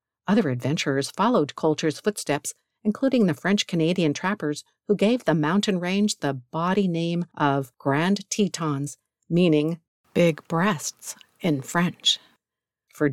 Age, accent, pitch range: 50-69, American, 150-195 Hz